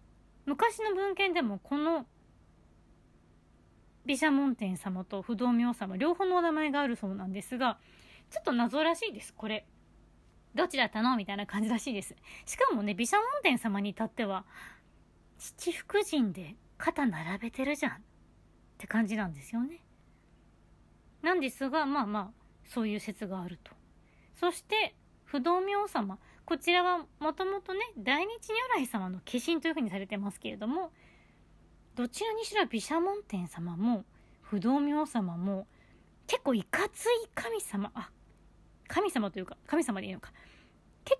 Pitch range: 205-330 Hz